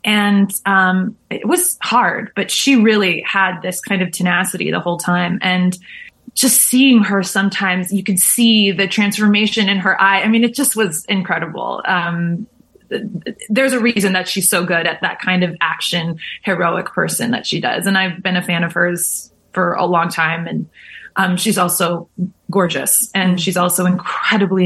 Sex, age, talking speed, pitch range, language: female, 20-39, 180 wpm, 180-210 Hz, English